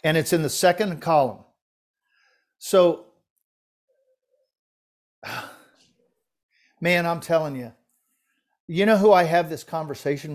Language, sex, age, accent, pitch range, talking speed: English, male, 50-69, American, 140-170 Hz, 105 wpm